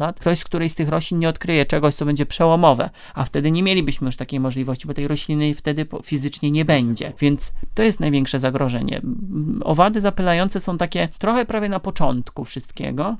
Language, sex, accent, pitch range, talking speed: Polish, male, native, 135-160 Hz, 175 wpm